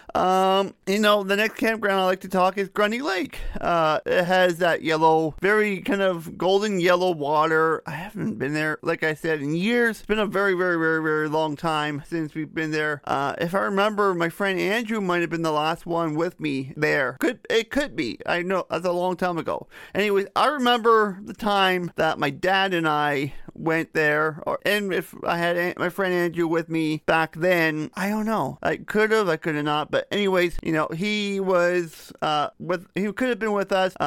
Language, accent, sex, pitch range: English, American, male, 160-195 Hz